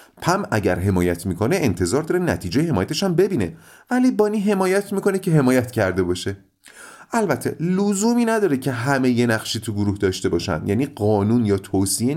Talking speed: 165 wpm